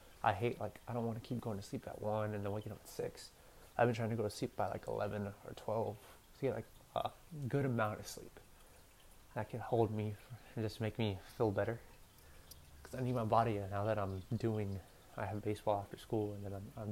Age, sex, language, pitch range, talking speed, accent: 20-39, male, English, 100-120 Hz, 240 wpm, American